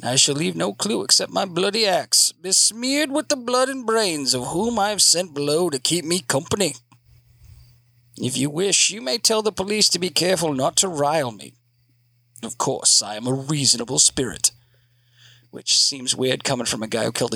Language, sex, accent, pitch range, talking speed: English, male, American, 120-195 Hz, 195 wpm